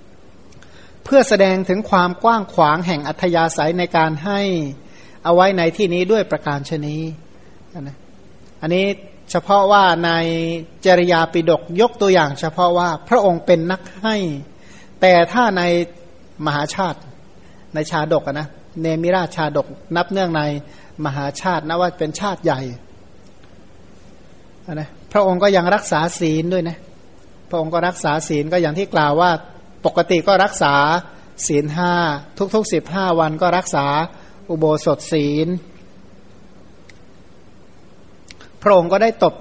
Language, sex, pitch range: Thai, male, 150-185 Hz